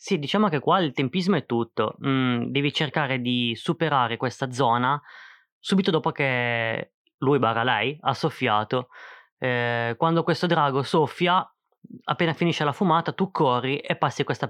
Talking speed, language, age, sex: 155 wpm, Italian, 20-39, female